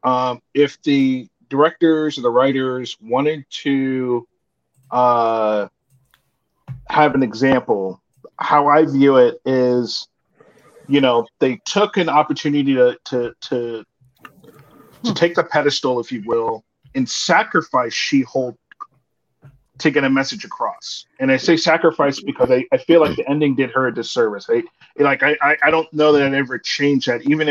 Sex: male